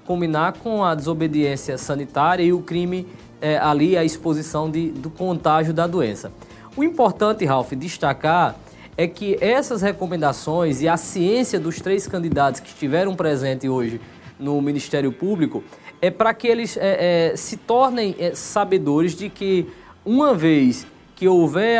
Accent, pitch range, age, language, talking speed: Brazilian, 160-210 Hz, 20-39, Portuguese, 145 wpm